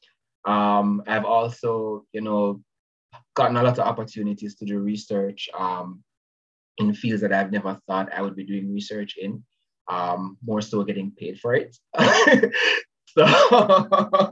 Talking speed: 145 wpm